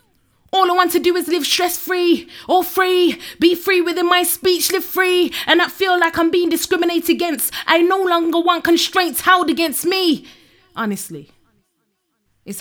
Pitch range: 175-275 Hz